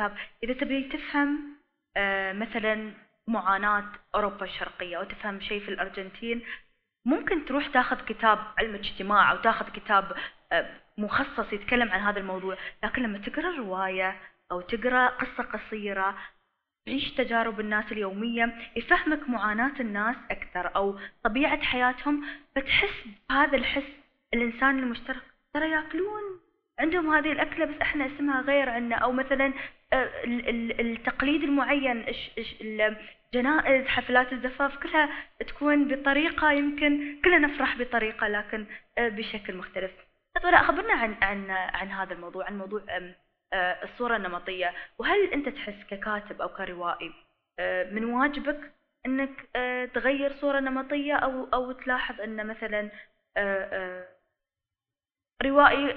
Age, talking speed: 20-39, 110 wpm